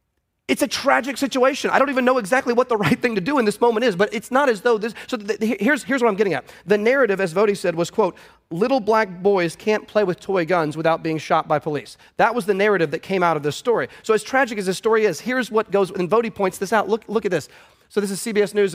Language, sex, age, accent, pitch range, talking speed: English, male, 30-49, American, 180-230 Hz, 280 wpm